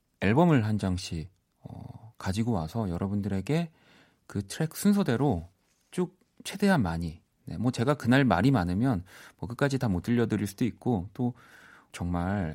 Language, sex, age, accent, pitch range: Korean, male, 40-59, native, 95-130 Hz